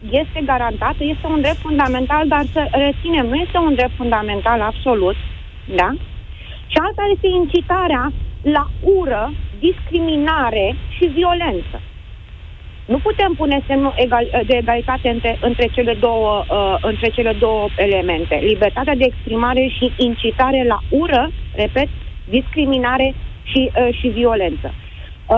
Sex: female